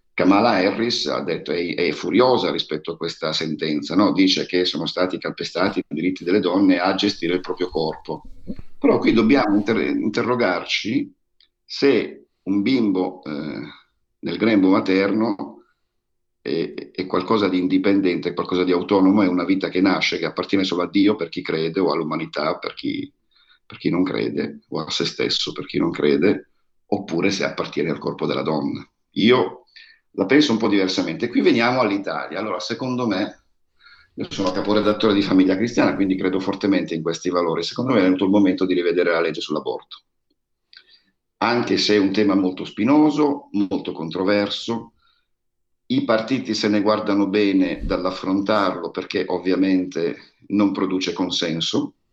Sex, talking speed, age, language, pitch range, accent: male, 160 wpm, 50-69, Italian, 90-115 Hz, native